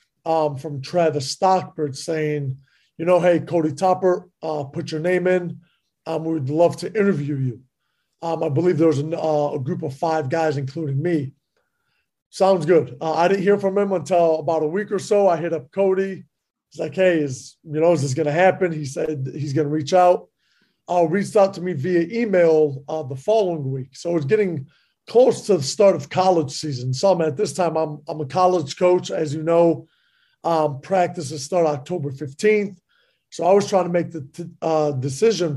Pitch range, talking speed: 150-180 Hz, 200 wpm